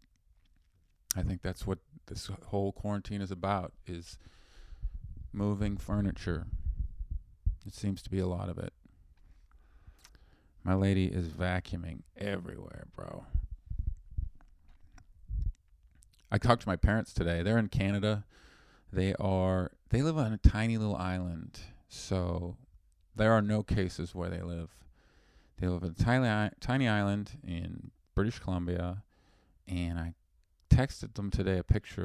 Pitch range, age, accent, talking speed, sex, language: 85-105 Hz, 40-59, American, 130 wpm, male, English